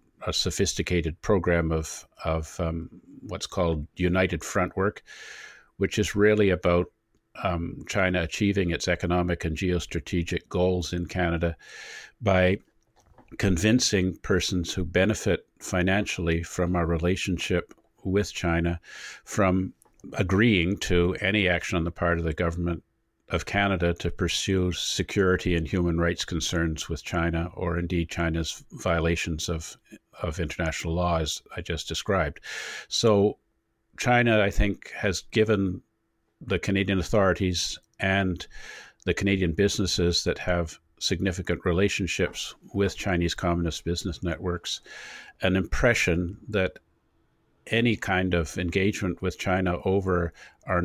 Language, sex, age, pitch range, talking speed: English, male, 50-69, 85-95 Hz, 120 wpm